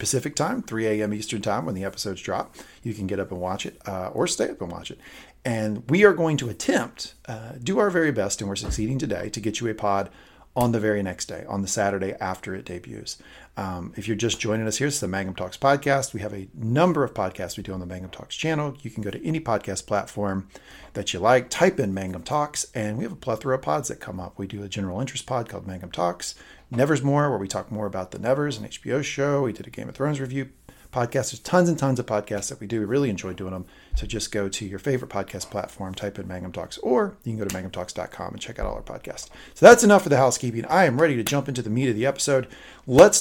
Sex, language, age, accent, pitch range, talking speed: male, English, 40-59, American, 100-135 Hz, 260 wpm